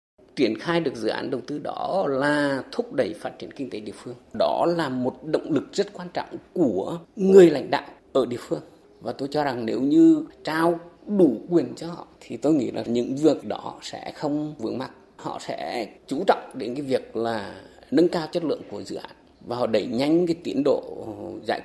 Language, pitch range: Vietnamese, 170-225 Hz